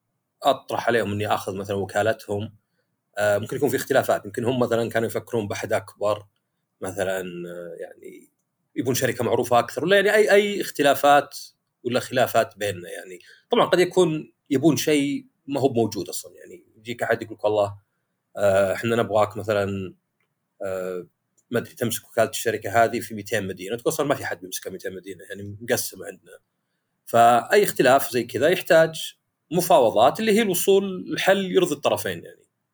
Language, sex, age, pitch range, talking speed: Arabic, male, 40-59, 105-170 Hz, 160 wpm